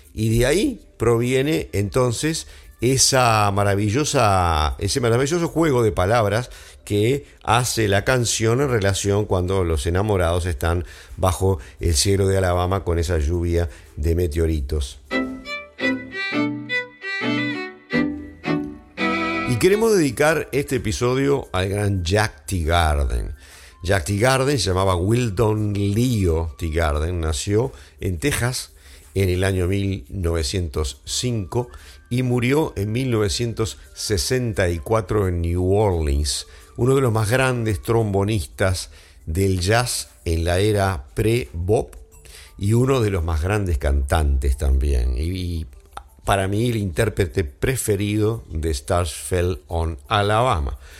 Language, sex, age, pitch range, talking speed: English, male, 50-69, 80-115 Hz, 115 wpm